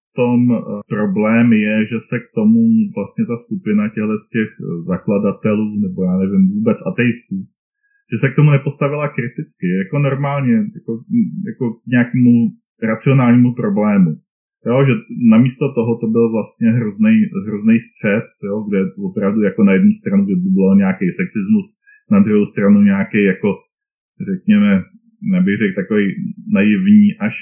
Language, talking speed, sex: Czech, 140 wpm, male